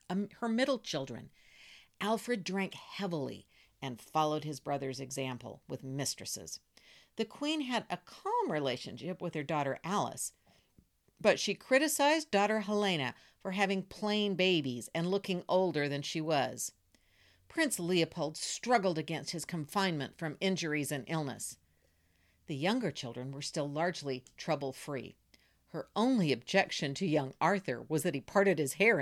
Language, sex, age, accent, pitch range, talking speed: English, female, 50-69, American, 145-210 Hz, 140 wpm